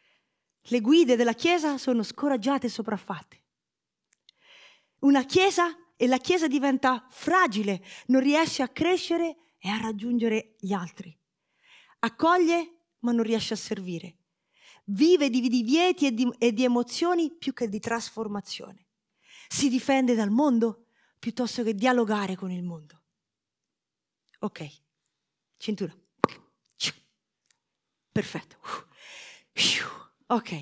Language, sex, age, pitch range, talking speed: Italian, female, 30-49, 200-280 Hz, 110 wpm